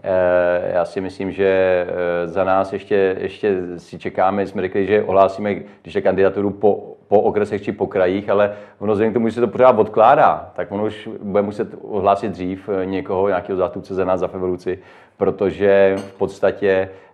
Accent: native